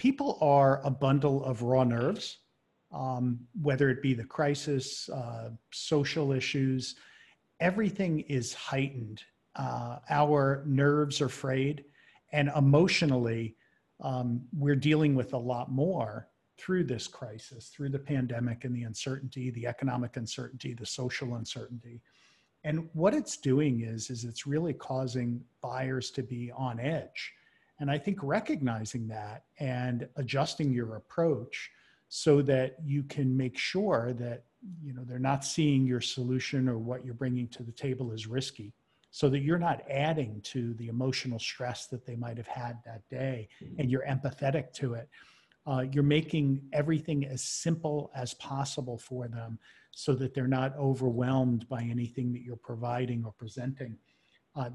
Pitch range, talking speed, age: 120-145 Hz, 150 wpm, 50-69